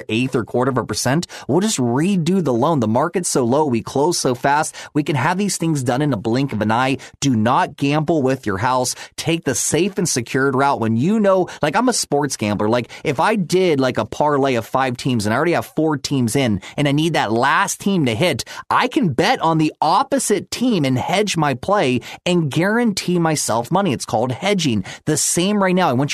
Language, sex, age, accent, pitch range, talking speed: English, male, 30-49, American, 125-170 Hz, 230 wpm